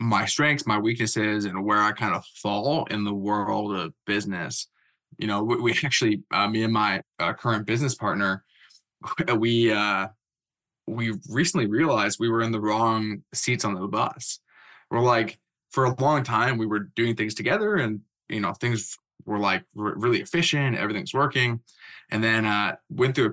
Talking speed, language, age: 180 wpm, English, 20-39